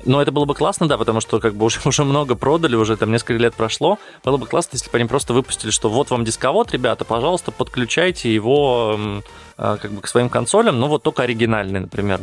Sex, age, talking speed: male, 20-39, 225 wpm